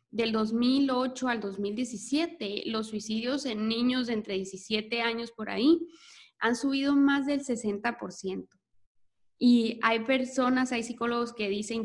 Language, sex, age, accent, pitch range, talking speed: Spanish, female, 20-39, Mexican, 210-260 Hz, 130 wpm